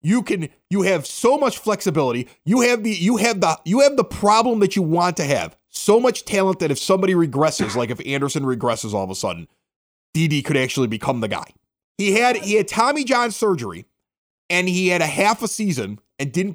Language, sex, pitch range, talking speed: English, male, 140-210 Hz, 215 wpm